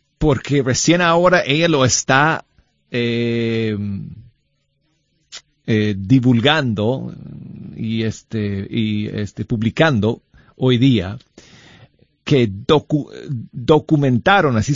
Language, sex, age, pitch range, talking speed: Spanish, male, 40-59, 110-150 Hz, 70 wpm